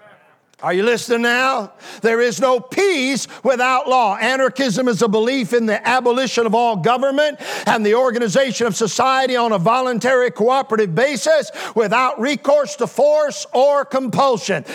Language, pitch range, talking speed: English, 235-275 Hz, 145 wpm